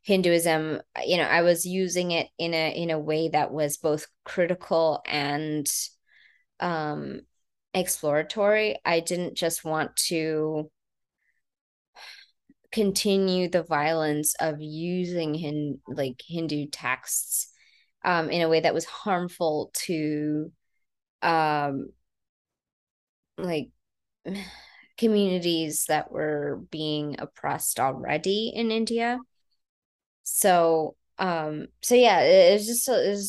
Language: English